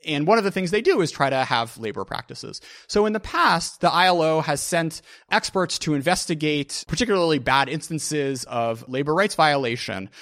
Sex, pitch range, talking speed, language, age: male, 120-170 Hz, 180 wpm, English, 30-49